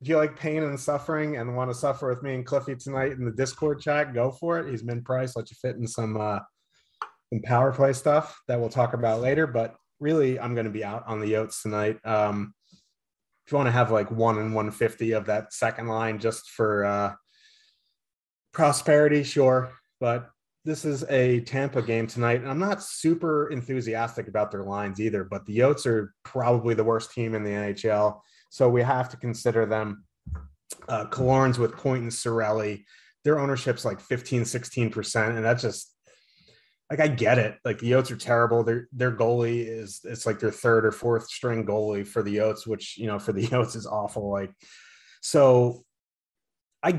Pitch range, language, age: 110-130 Hz, English, 30-49